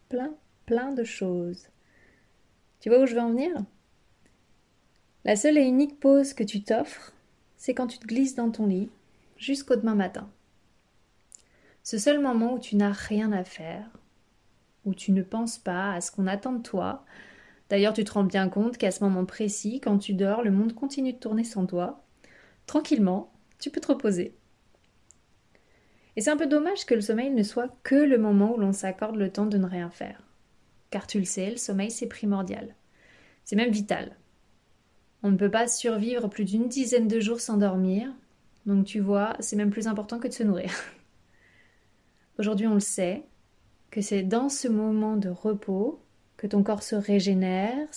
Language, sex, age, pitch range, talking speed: French, female, 30-49, 195-240 Hz, 185 wpm